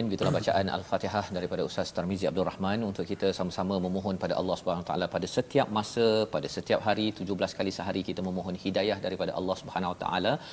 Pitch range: 100-110 Hz